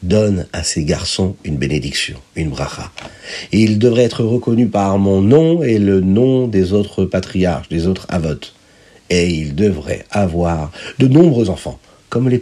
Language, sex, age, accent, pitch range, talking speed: French, male, 50-69, French, 90-130 Hz, 160 wpm